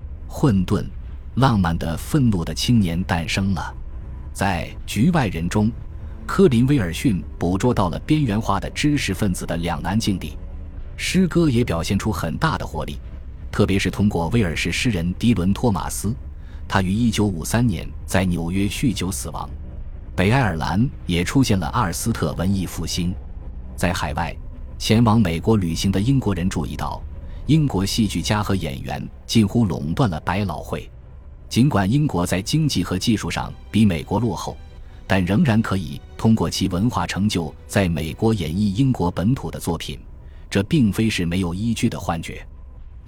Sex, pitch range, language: male, 80-110 Hz, Chinese